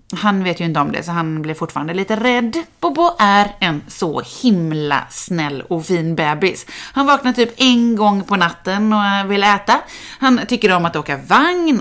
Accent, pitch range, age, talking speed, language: native, 175-265 Hz, 30-49, 190 wpm, Swedish